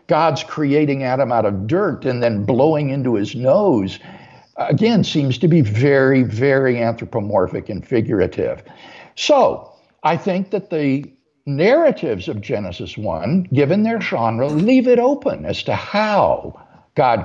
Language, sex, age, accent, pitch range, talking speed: English, male, 60-79, American, 140-210 Hz, 140 wpm